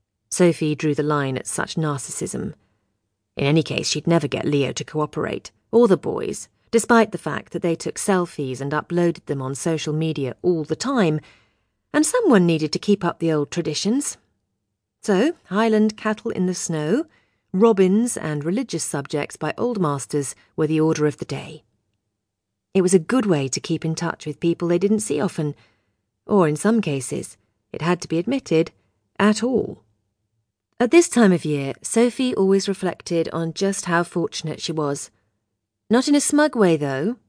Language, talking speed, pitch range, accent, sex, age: English, 175 wpm, 145-195 Hz, British, female, 40-59